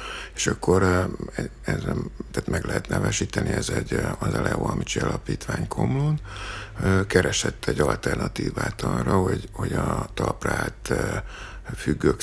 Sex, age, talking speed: male, 60-79, 125 wpm